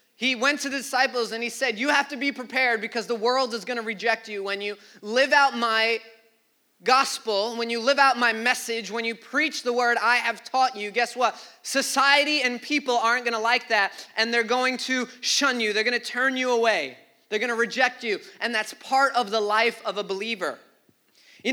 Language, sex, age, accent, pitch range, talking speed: English, male, 20-39, American, 225-265 Hz, 220 wpm